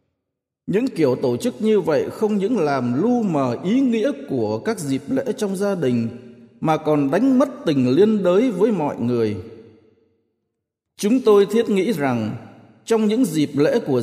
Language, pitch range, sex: Vietnamese, 125-200 Hz, male